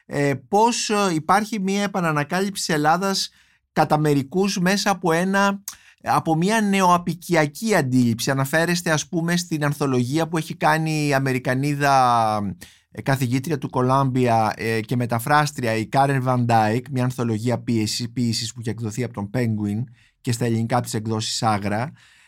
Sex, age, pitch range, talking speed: male, 30-49, 120-150 Hz, 125 wpm